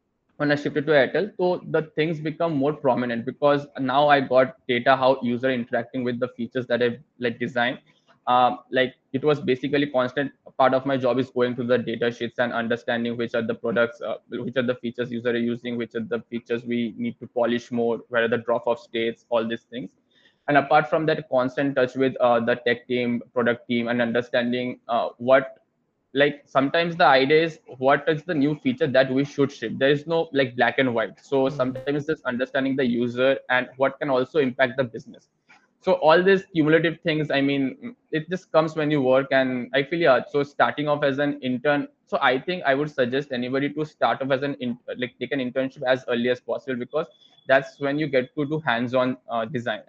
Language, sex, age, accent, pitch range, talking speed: English, male, 20-39, Indian, 120-145 Hz, 215 wpm